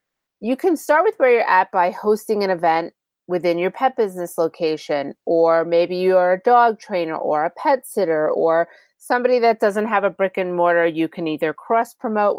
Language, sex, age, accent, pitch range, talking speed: English, female, 30-49, American, 175-230 Hz, 195 wpm